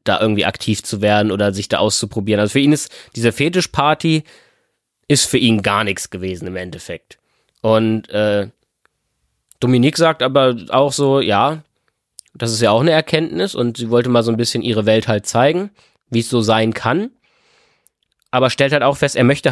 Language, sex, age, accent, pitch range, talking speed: German, male, 20-39, German, 110-140 Hz, 185 wpm